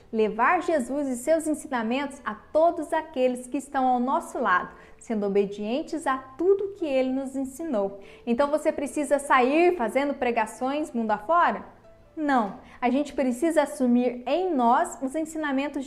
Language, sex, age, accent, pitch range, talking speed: Portuguese, female, 20-39, Brazilian, 245-315 Hz, 145 wpm